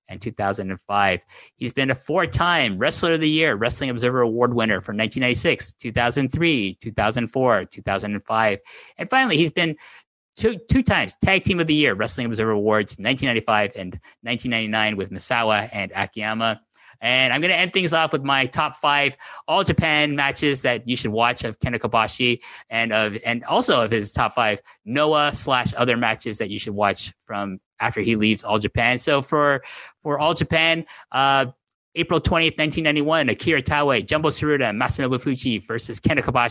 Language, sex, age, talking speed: English, male, 30-49, 165 wpm